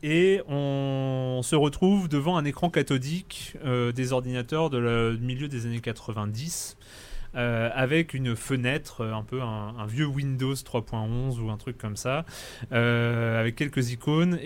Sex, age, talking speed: male, 30-49, 155 wpm